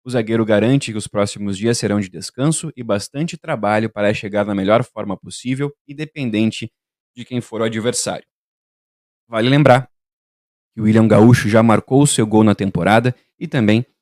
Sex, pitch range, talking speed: male, 105-125 Hz, 175 wpm